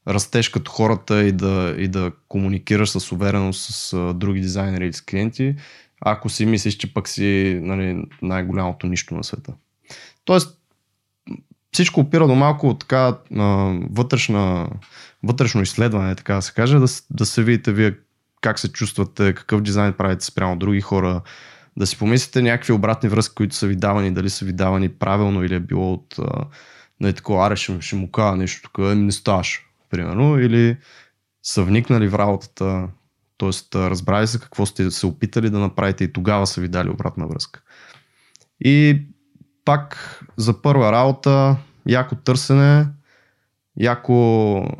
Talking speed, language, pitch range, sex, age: 155 wpm, Bulgarian, 95-120 Hz, male, 20-39